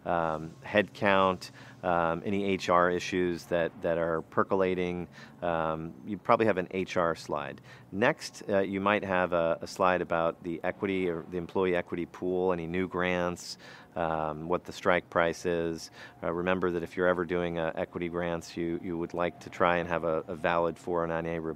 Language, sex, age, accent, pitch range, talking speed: English, male, 40-59, American, 85-100 Hz, 180 wpm